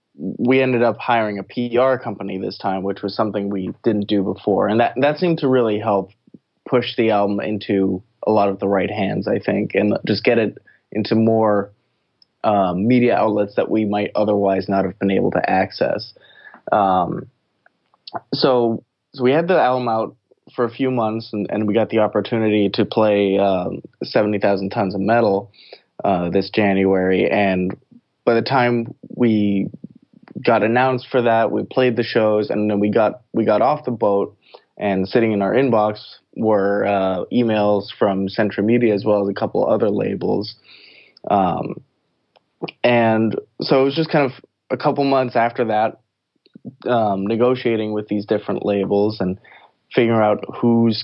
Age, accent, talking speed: 20-39, American, 170 wpm